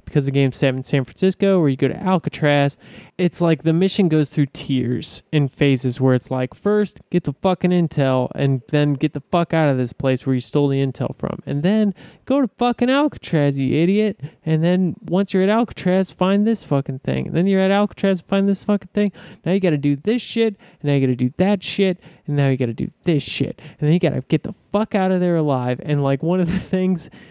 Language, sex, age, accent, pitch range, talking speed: English, male, 20-39, American, 140-190 Hz, 235 wpm